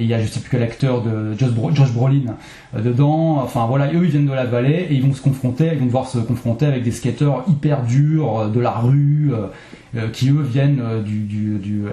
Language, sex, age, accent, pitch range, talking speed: French, male, 20-39, French, 120-145 Hz, 260 wpm